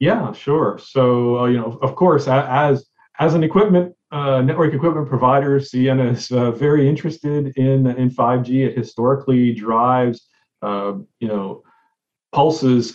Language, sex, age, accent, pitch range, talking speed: English, male, 40-59, American, 105-130 Hz, 150 wpm